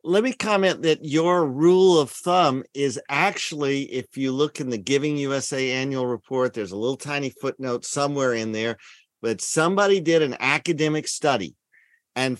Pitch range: 130-165 Hz